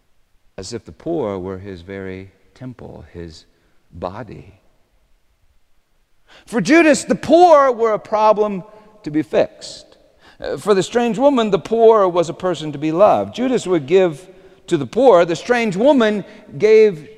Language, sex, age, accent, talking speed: English, male, 50-69, American, 145 wpm